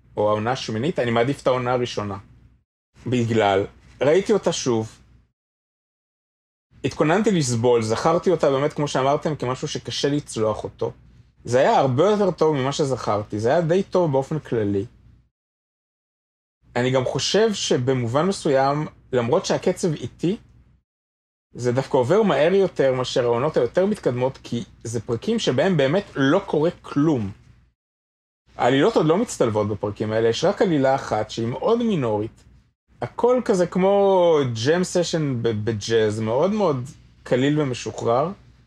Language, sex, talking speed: Hebrew, male, 105 wpm